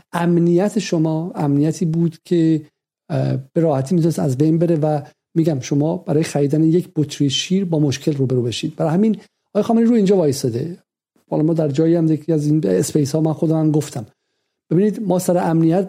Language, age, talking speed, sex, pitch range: Persian, 50-69, 180 wpm, male, 145-180 Hz